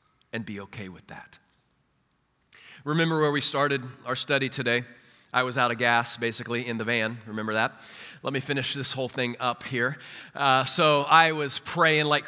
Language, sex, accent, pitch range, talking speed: English, male, American, 125-175 Hz, 180 wpm